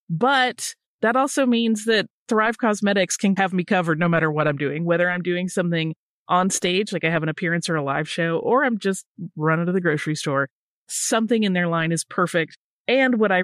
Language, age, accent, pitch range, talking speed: English, 30-49, American, 165-215 Hz, 215 wpm